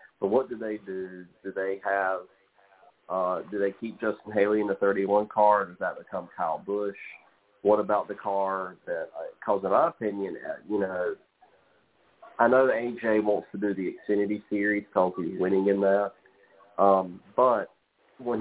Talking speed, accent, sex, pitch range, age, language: 165 wpm, American, male, 95-120 Hz, 40-59, English